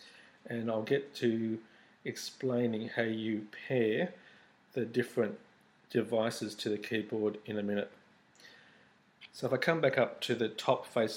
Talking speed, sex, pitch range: 145 wpm, male, 110-125 Hz